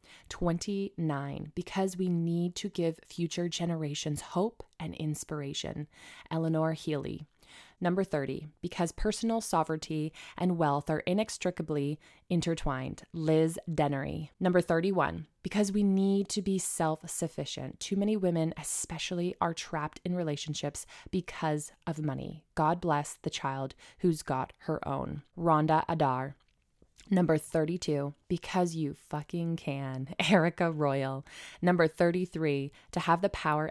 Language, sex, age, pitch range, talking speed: English, female, 20-39, 150-180 Hz, 120 wpm